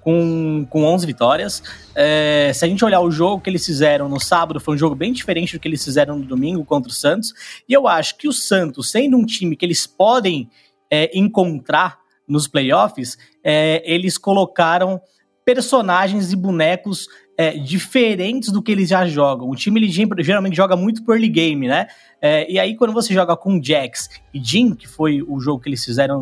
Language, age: Portuguese, 20-39